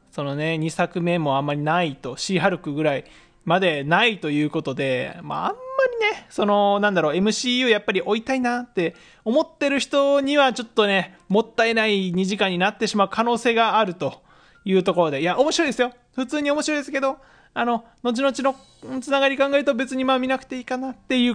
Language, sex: Japanese, male